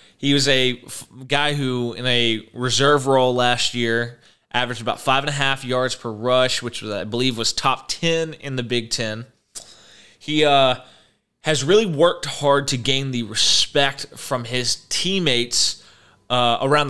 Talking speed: 165 wpm